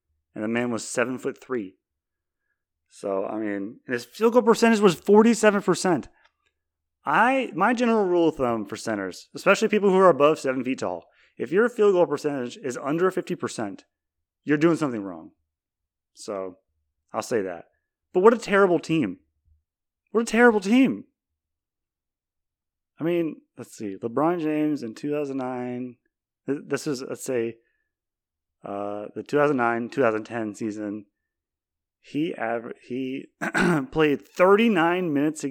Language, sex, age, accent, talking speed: English, male, 30-49, American, 135 wpm